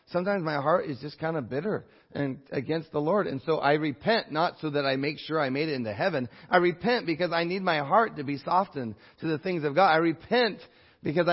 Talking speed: 240 wpm